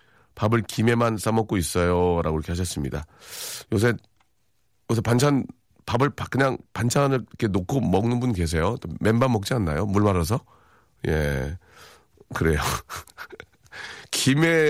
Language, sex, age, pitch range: Korean, male, 40-59, 90-130 Hz